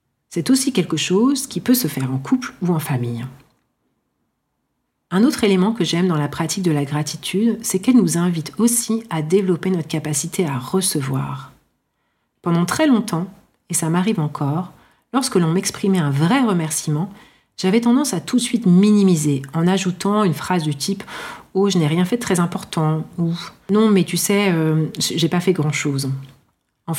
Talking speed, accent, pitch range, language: 180 wpm, French, 155-200 Hz, French